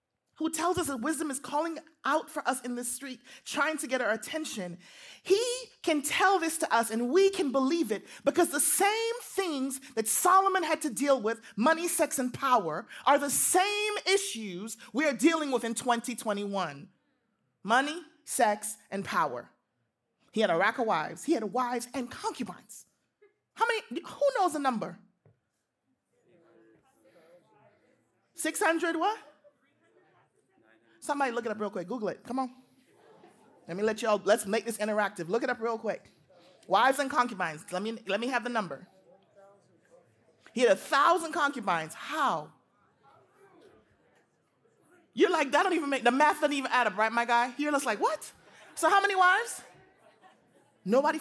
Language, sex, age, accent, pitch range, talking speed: English, male, 30-49, American, 230-340 Hz, 165 wpm